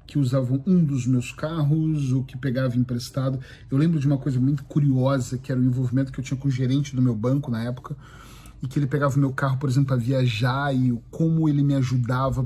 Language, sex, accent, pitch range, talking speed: Portuguese, male, Brazilian, 125-145 Hz, 235 wpm